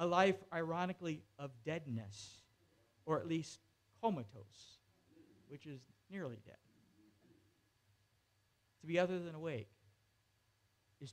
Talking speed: 100 wpm